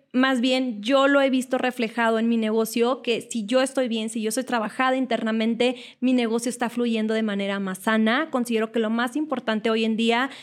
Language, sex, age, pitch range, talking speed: Spanish, female, 20-39, 225-260 Hz, 205 wpm